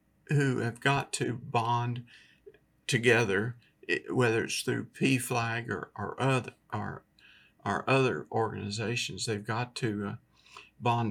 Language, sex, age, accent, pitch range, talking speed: English, male, 50-69, American, 115-135 Hz, 120 wpm